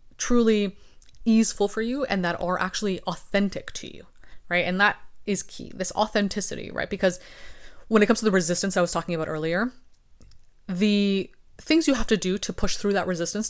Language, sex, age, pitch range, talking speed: English, female, 20-39, 165-205 Hz, 185 wpm